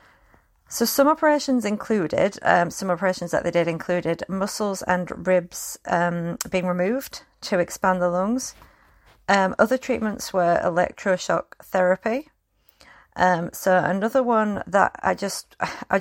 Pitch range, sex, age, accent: 185-230 Hz, female, 40-59, British